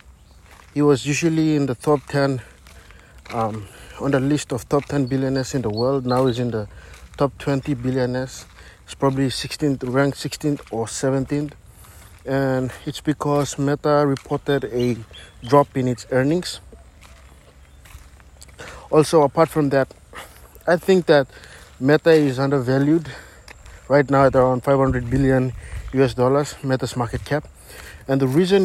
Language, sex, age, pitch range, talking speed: English, male, 50-69, 100-145 Hz, 140 wpm